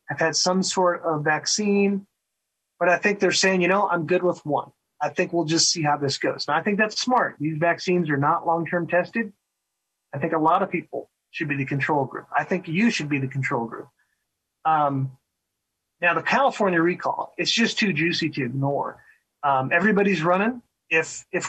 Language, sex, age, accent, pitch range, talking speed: English, male, 30-49, American, 155-195 Hz, 200 wpm